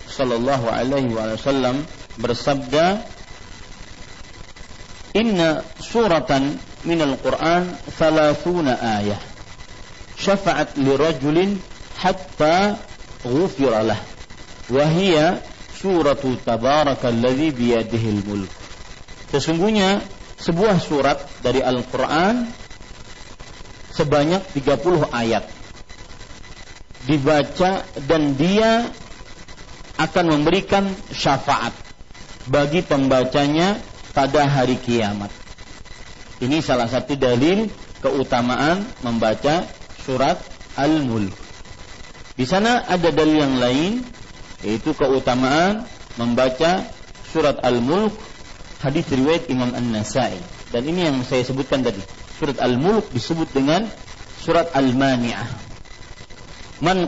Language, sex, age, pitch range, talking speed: Malay, male, 50-69, 115-160 Hz, 80 wpm